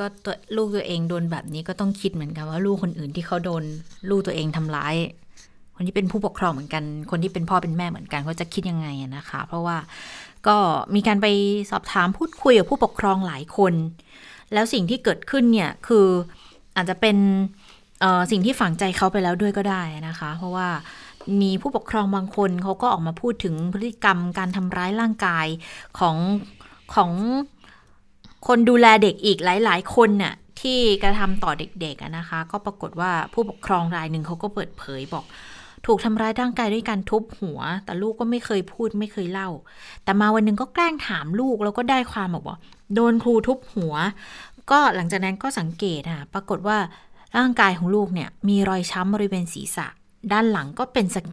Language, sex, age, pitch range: Thai, female, 20-39, 175-215 Hz